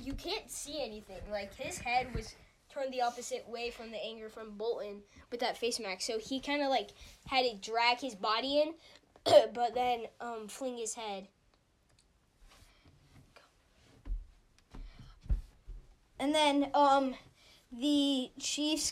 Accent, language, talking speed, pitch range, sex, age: American, English, 135 wpm, 235-280 Hz, female, 10-29